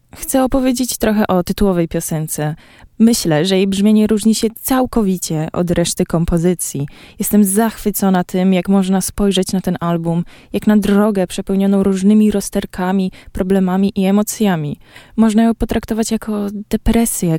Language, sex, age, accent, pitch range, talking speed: Polish, female, 20-39, native, 170-210 Hz, 135 wpm